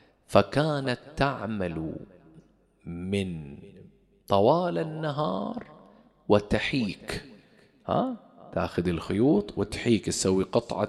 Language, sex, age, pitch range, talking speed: English, male, 40-59, 100-170 Hz, 60 wpm